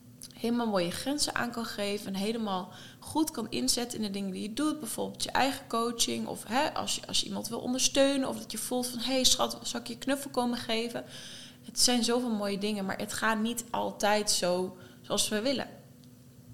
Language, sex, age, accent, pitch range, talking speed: Dutch, female, 20-39, Dutch, 155-235 Hz, 200 wpm